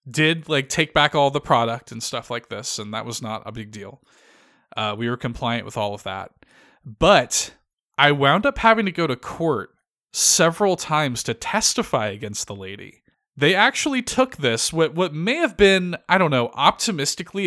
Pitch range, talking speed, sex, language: 125-185 Hz, 190 wpm, male, English